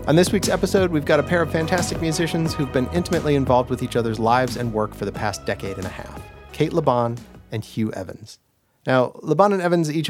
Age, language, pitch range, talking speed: 30-49, English, 120-155 Hz, 225 wpm